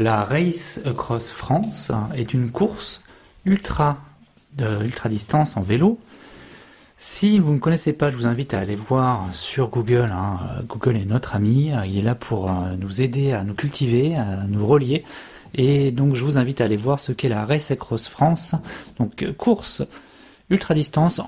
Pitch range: 120-165 Hz